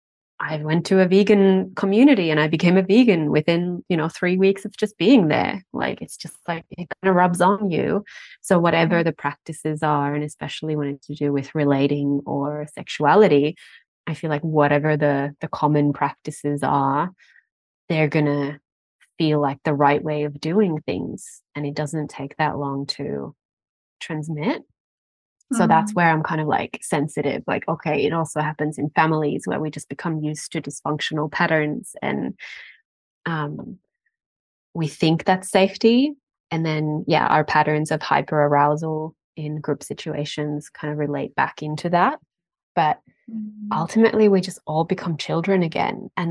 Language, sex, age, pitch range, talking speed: English, female, 20-39, 150-180 Hz, 165 wpm